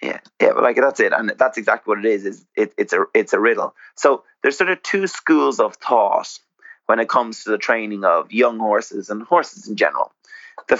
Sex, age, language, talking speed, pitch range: male, 30-49, English, 230 wpm, 110-140 Hz